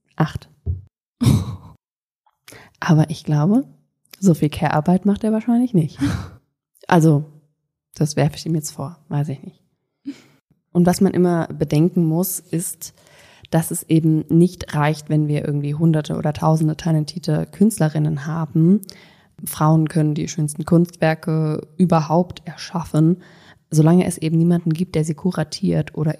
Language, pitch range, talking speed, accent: German, 150-180 Hz, 135 wpm, German